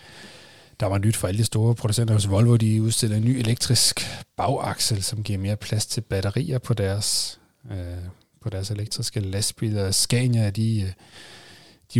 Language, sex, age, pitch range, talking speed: Danish, male, 30-49, 100-120 Hz, 160 wpm